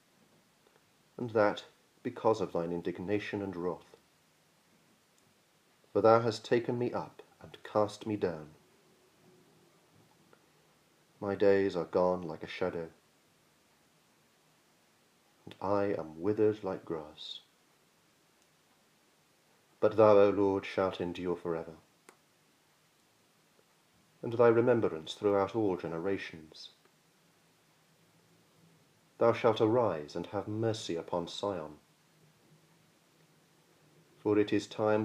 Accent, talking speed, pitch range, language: British, 100 wpm, 100-160 Hz, English